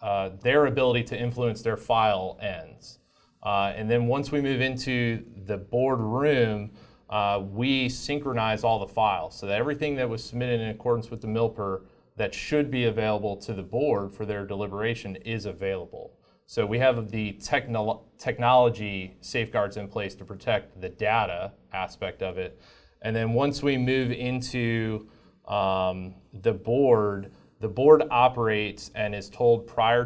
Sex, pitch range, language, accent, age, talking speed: male, 100-125 Hz, English, American, 30-49, 160 wpm